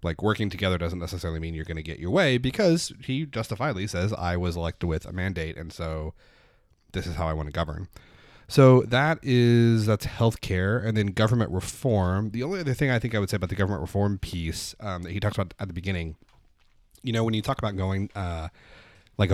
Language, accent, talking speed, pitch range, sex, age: English, American, 220 wpm, 85-110 Hz, male, 30-49